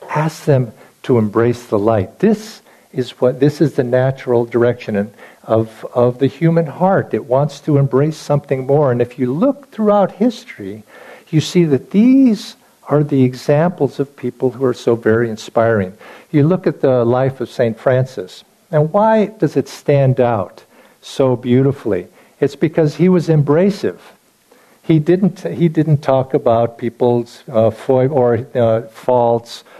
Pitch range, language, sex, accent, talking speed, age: 120-160 Hz, English, male, American, 155 wpm, 50-69